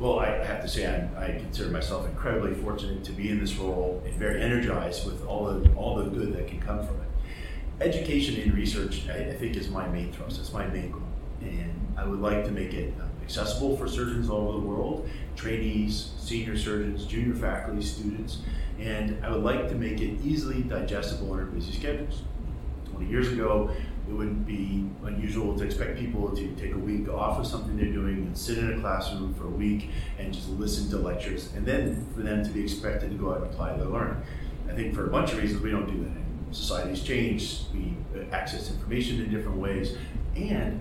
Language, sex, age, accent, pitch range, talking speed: English, male, 30-49, American, 90-110 Hz, 210 wpm